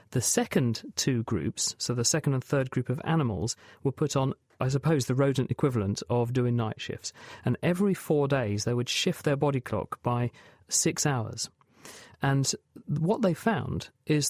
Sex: male